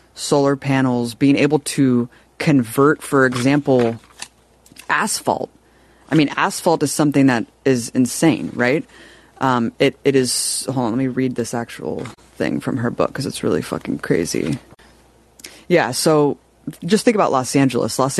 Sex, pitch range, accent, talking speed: female, 120-145 Hz, American, 150 wpm